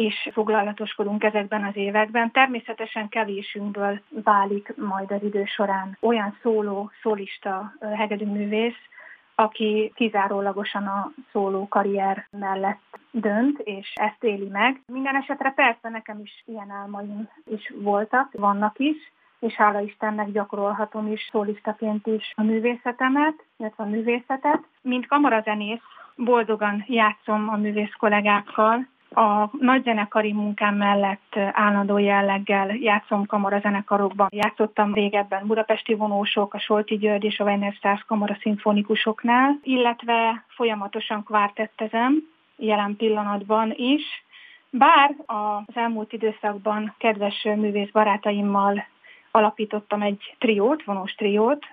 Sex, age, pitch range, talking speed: female, 30-49, 205-230 Hz, 110 wpm